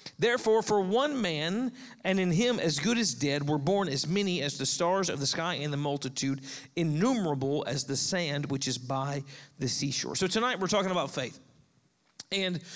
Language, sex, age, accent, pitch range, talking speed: English, male, 40-59, American, 165-230 Hz, 190 wpm